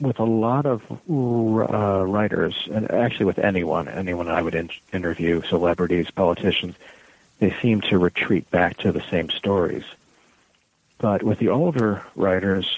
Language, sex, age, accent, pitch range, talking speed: English, male, 60-79, American, 90-110 Hz, 140 wpm